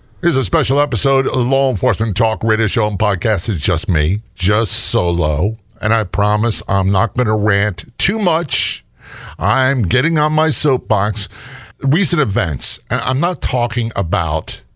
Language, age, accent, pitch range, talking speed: English, 50-69, American, 105-140 Hz, 160 wpm